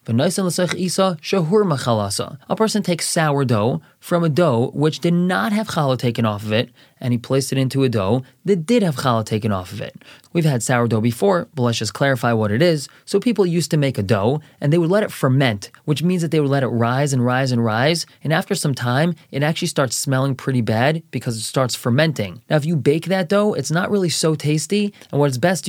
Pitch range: 125-170 Hz